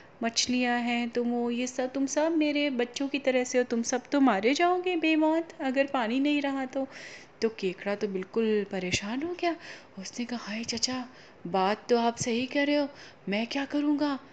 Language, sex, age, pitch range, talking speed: Hindi, female, 30-49, 210-260 Hz, 195 wpm